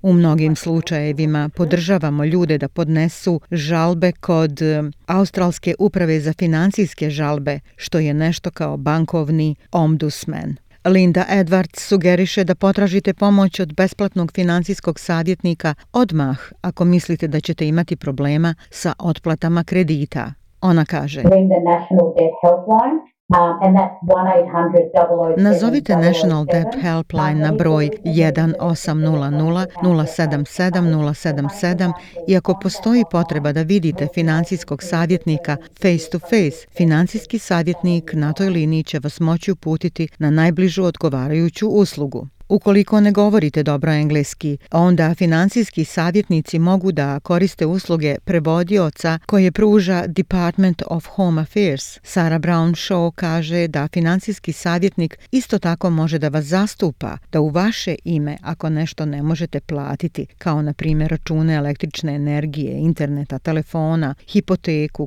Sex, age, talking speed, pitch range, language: female, 40-59, 115 wpm, 155-185 Hz, Croatian